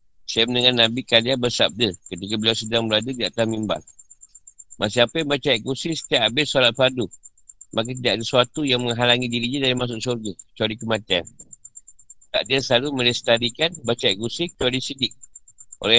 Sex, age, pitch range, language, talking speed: male, 50-69, 100-130 Hz, Malay, 150 wpm